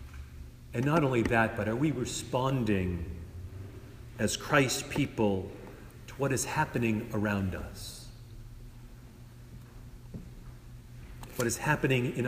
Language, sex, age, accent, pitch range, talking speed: English, male, 50-69, American, 115-135 Hz, 105 wpm